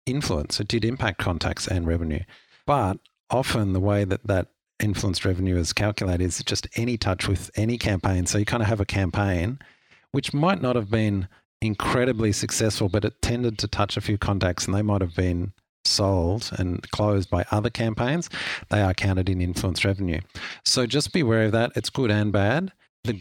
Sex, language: male, English